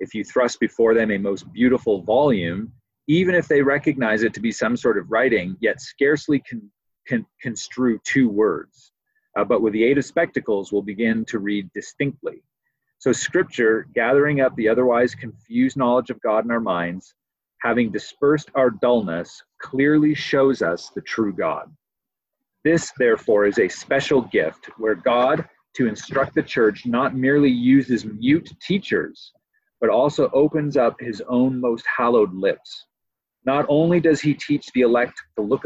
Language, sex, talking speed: English, male, 160 wpm